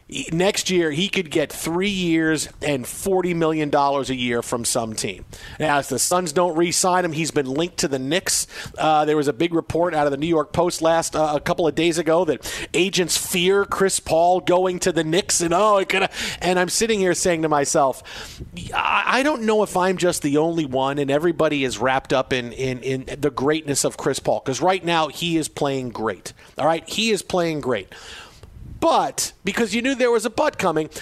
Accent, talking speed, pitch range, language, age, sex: American, 220 wpm, 150-190 Hz, English, 40-59, male